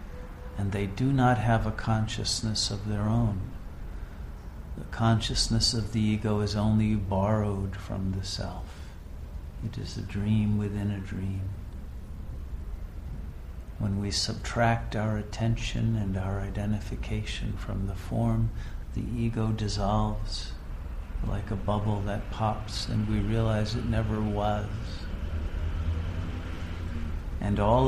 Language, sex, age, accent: English, male, 50-69, American